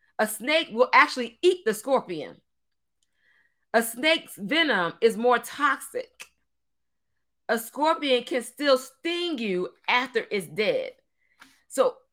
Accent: American